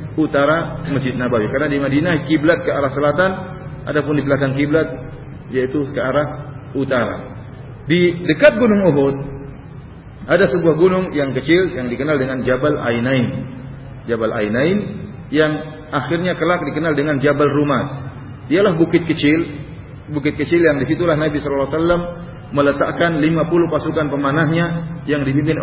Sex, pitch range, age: male, 130-155 Hz, 40-59